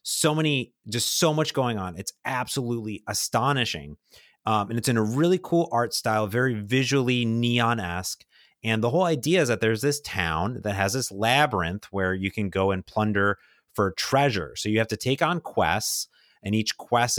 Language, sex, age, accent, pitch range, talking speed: English, male, 30-49, American, 95-125 Hz, 185 wpm